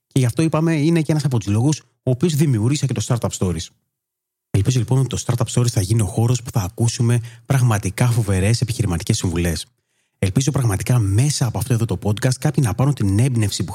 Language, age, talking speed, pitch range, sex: Greek, 30-49, 210 wpm, 100-130 Hz, male